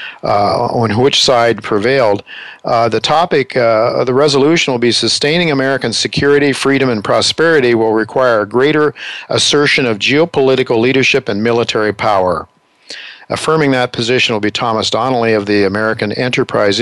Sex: male